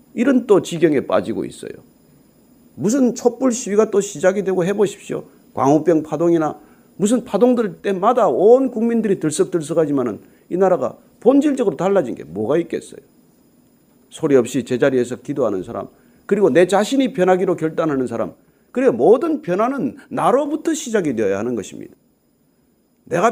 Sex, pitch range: male, 170-250 Hz